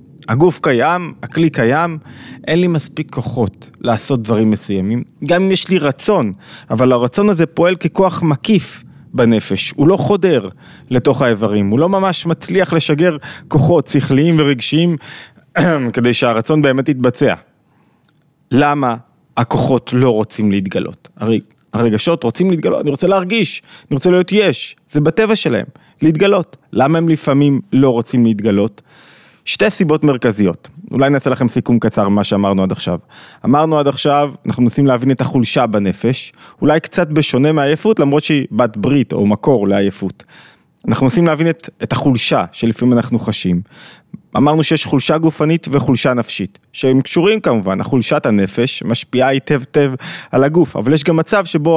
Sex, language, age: male, Hebrew, 30-49